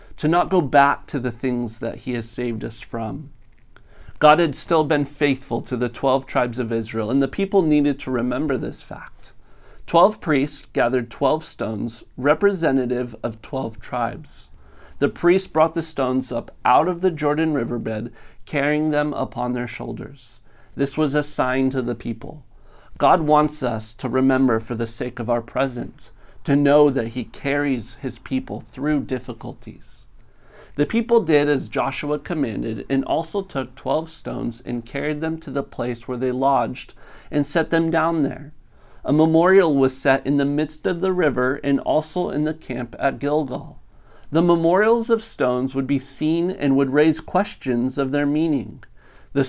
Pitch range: 125-150 Hz